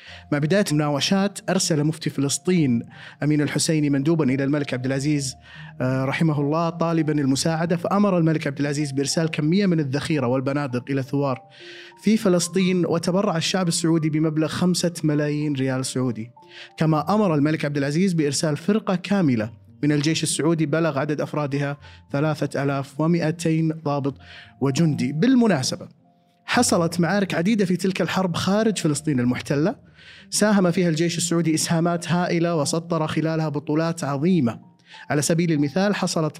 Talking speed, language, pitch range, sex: 130 wpm, Arabic, 145-180 Hz, male